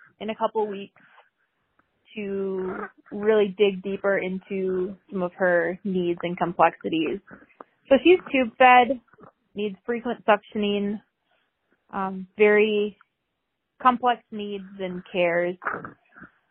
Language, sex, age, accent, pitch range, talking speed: English, female, 20-39, American, 195-245 Hz, 105 wpm